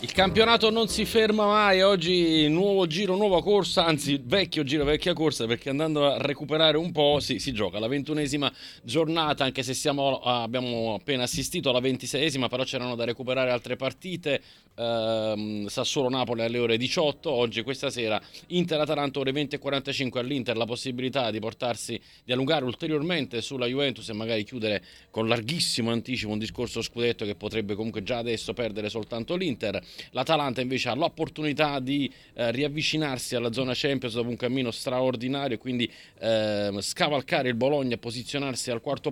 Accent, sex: native, male